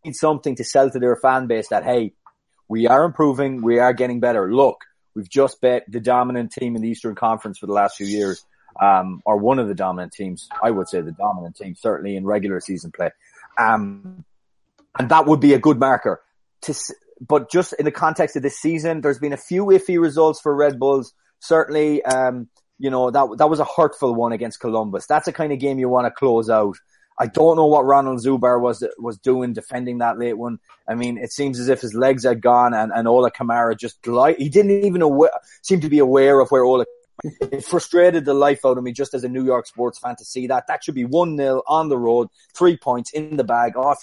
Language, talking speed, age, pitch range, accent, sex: English, 230 wpm, 30-49, 115-150 Hz, Irish, male